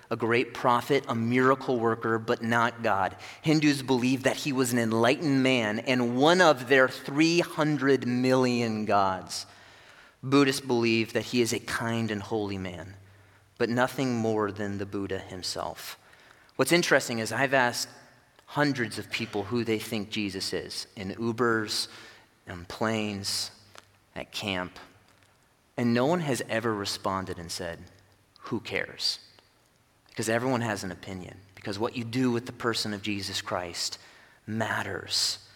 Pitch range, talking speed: 110-155 Hz, 145 wpm